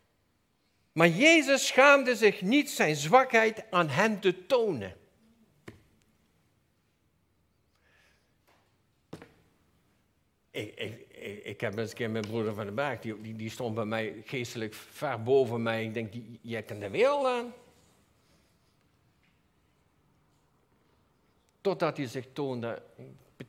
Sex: male